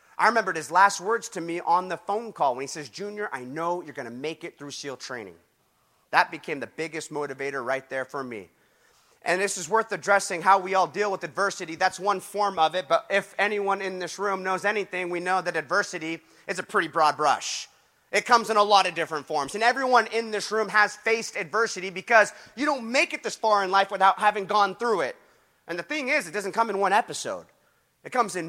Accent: American